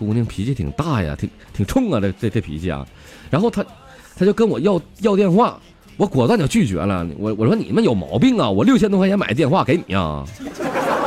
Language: Chinese